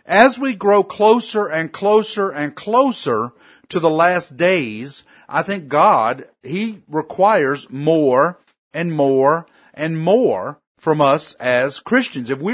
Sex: male